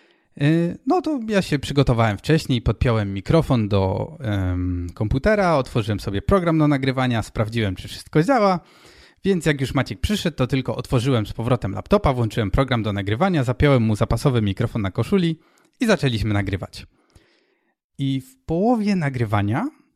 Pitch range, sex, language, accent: 110-155 Hz, male, Polish, native